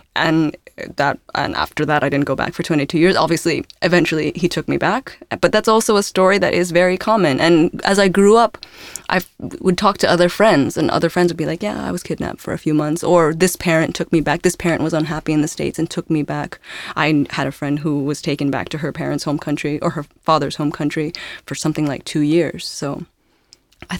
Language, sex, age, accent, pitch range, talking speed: English, female, 20-39, American, 150-175 Hz, 240 wpm